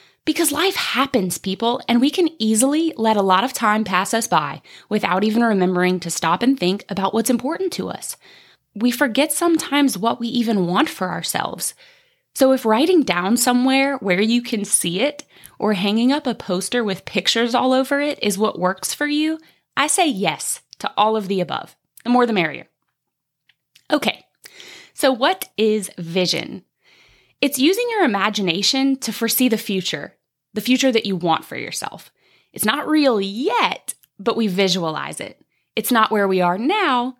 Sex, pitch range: female, 185-265 Hz